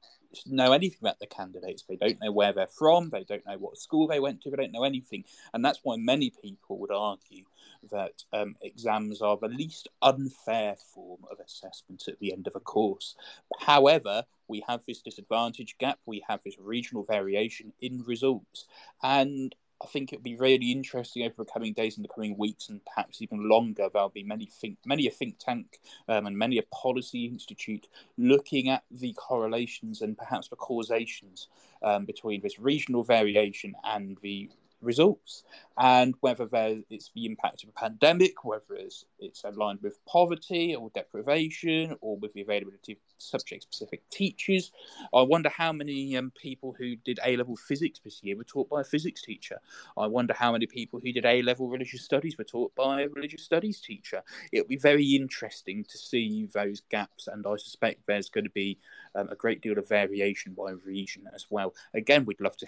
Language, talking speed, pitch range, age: English, 190 wpm, 105-145 Hz, 20-39